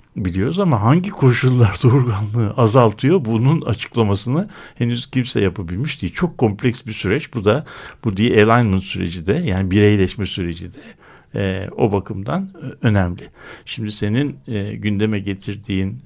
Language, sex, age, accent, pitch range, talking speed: Turkish, male, 60-79, native, 95-130 Hz, 140 wpm